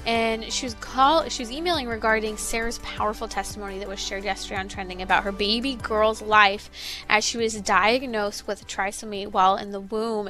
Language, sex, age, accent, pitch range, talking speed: English, female, 20-39, American, 205-245 Hz, 175 wpm